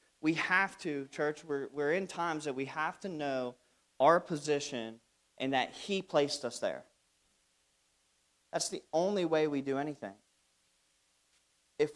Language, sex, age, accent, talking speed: English, male, 40-59, American, 145 wpm